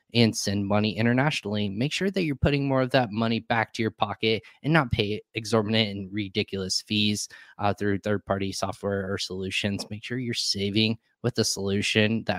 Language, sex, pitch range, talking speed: English, male, 100-120 Hz, 190 wpm